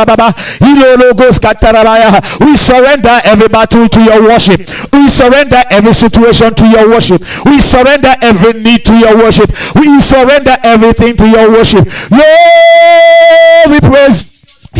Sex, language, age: male, English, 50-69